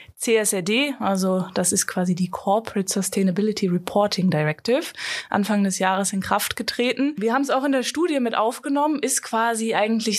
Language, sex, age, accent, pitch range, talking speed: German, female, 20-39, German, 190-225 Hz, 165 wpm